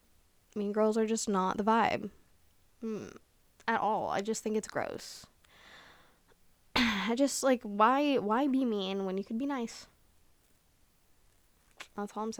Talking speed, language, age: 135 wpm, English, 10-29